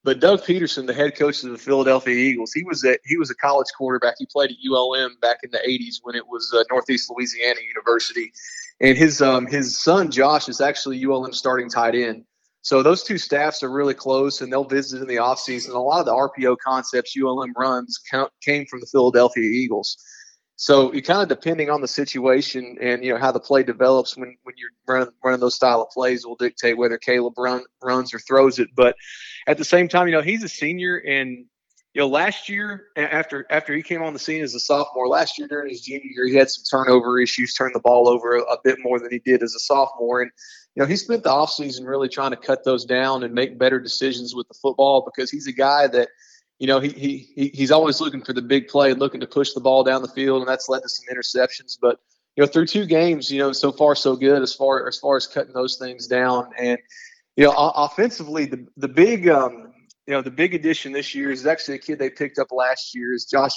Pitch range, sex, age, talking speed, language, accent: 125-145 Hz, male, 30-49, 235 wpm, English, American